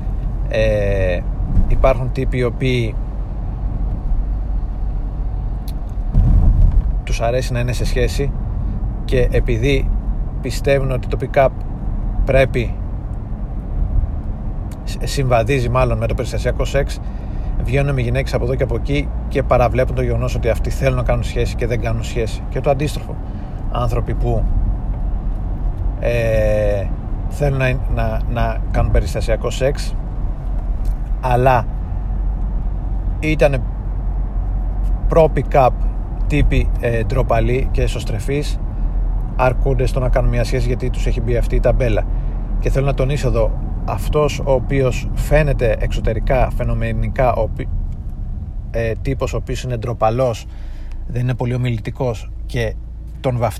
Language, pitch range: Greek, 100-125 Hz